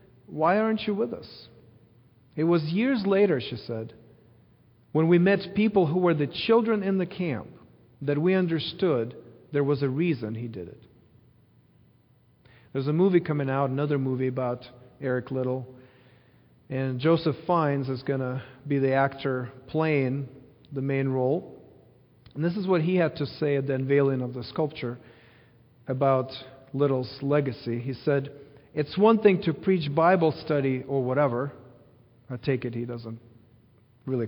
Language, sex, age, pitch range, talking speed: English, male, 40-59, 125-160 Hz, 155 wpm